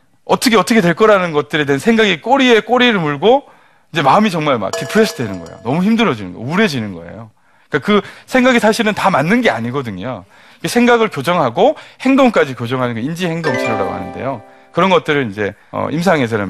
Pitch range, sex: 120-200 Hz, male